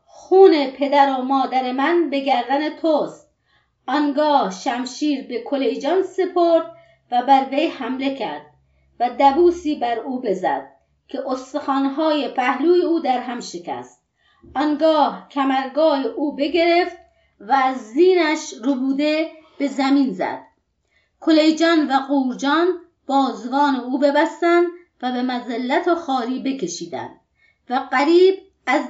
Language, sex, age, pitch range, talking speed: Persian, female, 30-49, 260-315 Hz, 115 wpm